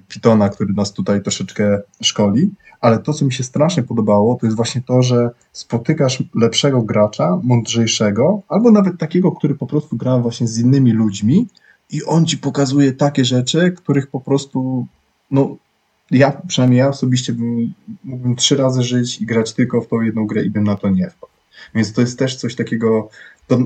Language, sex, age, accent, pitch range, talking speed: Polish, male, 20-39, native, 110-135 Hz, 180 wpm